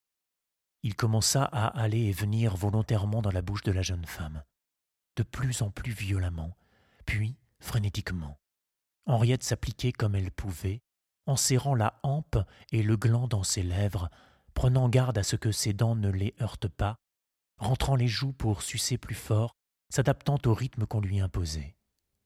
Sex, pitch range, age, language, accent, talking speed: male, 95-115 Hz, 40-59, French, French, 160 wpm